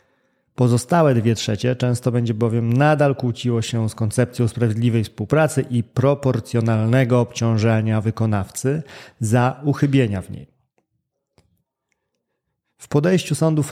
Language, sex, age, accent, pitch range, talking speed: Polish, male, 30-49, native, 110-135 Hz, 105 wpm